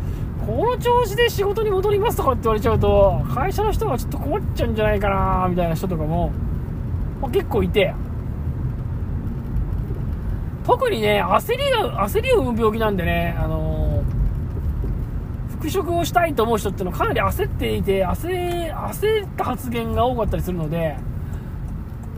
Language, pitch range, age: Japanese, 160-260 Hz, 20-39